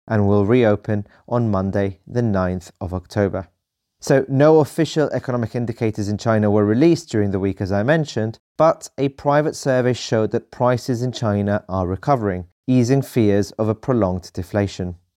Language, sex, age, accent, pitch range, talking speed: English, male, 30-49, British, 100-120 Hz, 160 wpm